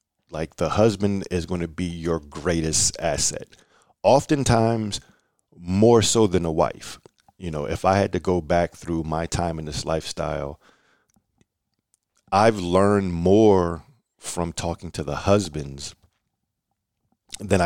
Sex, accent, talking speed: male, American, 135 wpm